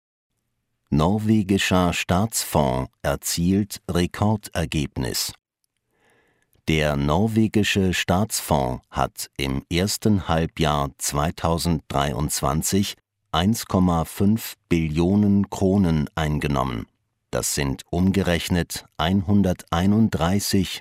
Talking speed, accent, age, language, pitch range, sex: 60 wpm, German, 50-69, English, 80-100 Hz, male